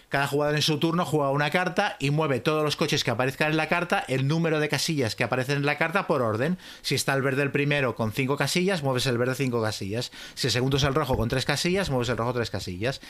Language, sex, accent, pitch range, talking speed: Spanish, male, Spanish, 130-160 Hz, 260 wpm